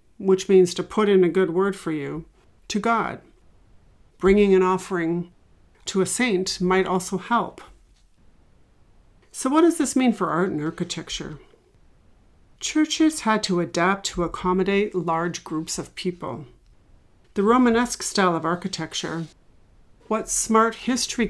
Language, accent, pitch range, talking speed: English, American, 170-215 Hz, 135 wpm